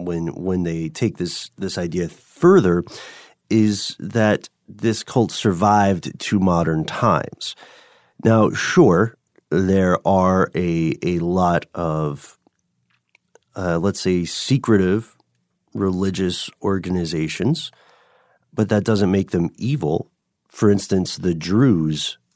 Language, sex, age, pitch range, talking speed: English, male, 40-59, 85-105 Hz, 105 wpm